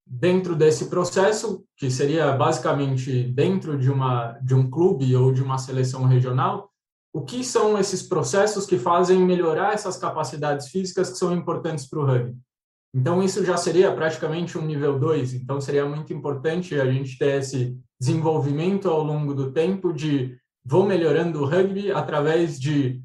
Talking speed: 160 wpm